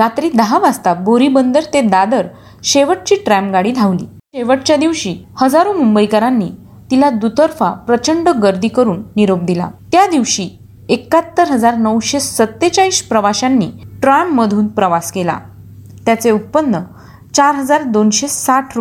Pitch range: 200-275 Hz